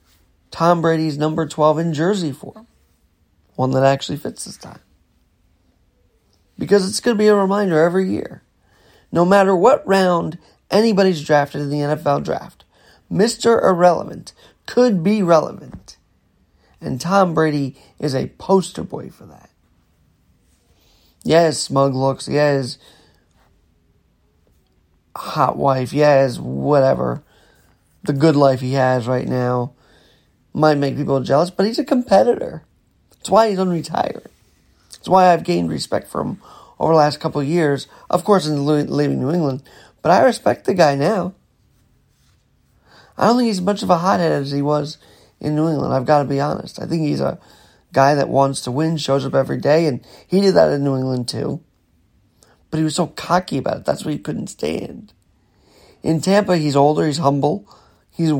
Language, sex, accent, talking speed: English, male, American, 165 wpm